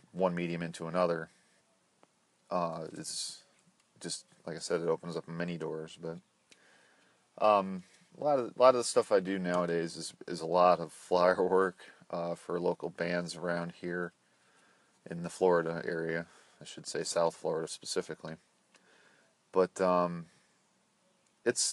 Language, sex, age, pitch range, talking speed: English, male, 40-59, 85-95 Hz, 150 wpm